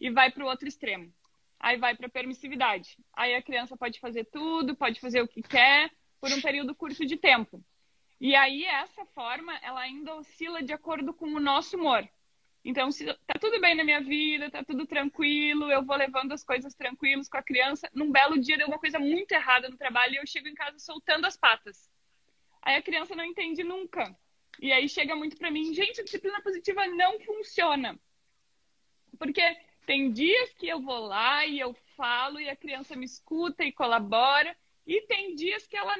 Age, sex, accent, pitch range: 20-39, female, Brazilian, 255-315 Hz